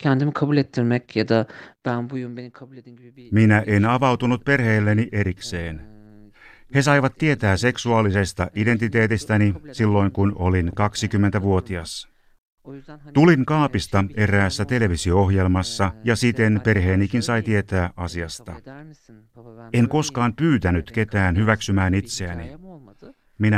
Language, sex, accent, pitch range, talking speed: Finnish, male, native, 100-120 Hz, 80 wpm